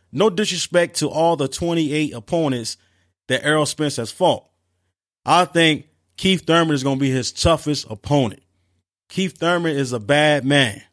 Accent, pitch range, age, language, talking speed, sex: American, 130-170 Hz, 30-49, English, 160 wpm, male